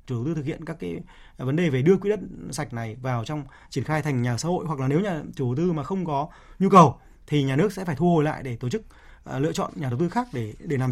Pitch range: 135-180 Hz